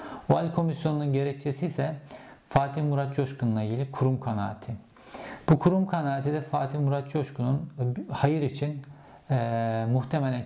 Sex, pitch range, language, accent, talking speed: male, 115-145 Hz, Turkish, native, 120 wpm